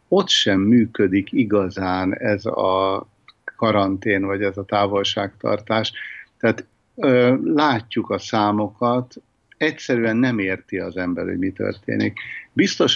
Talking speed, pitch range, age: 110 wpm, 95-110 Hz, 50-69